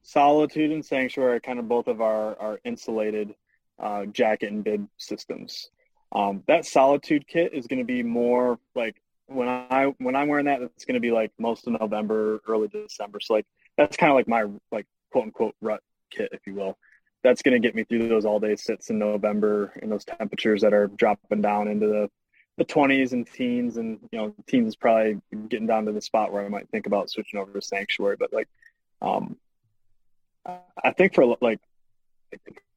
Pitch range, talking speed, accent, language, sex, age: 105-130 Hz, 190 wpm, American, English, male, 20-39